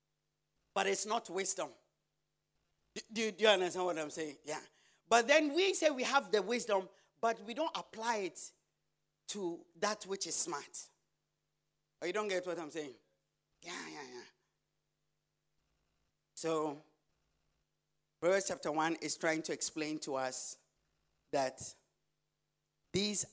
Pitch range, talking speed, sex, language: 140-200 Hz, 135 wpm, male, English